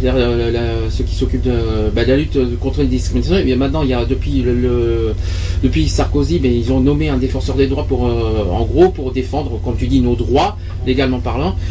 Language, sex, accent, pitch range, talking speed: French, male, French, 85-120 Hz, 225 wpm